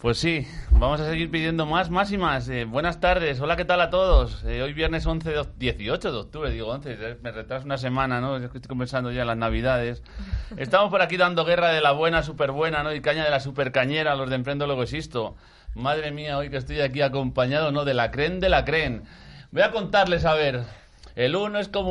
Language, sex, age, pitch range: Spanish, male, 40-59, 130-185 Hz